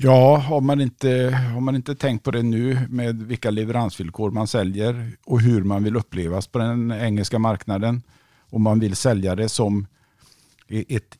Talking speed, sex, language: 170 wpm, male, English